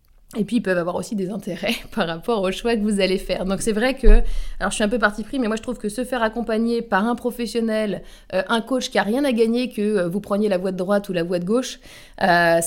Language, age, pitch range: French, 20-39, 180-220 Hz